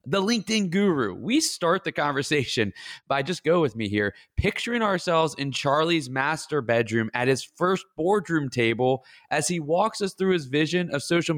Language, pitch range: English, 130-180 Hz